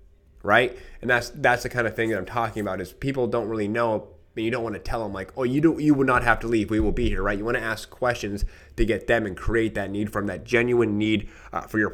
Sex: male